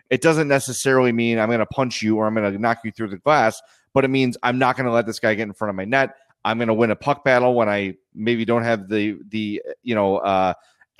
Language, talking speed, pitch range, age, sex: English, 280 wpm, 110-135 Hz, 30-49, male